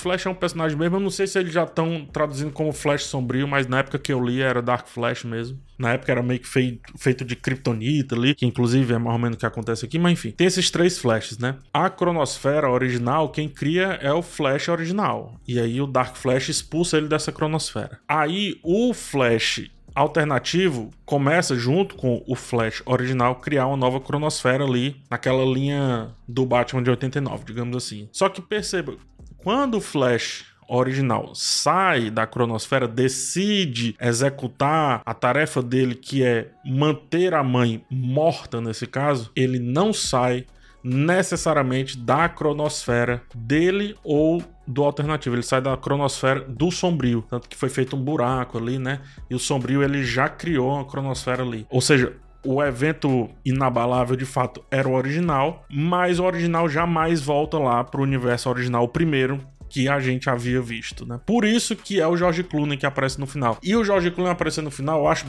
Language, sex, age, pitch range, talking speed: Portuguese, male, 20-39, 125-160 Hz, 180 wpm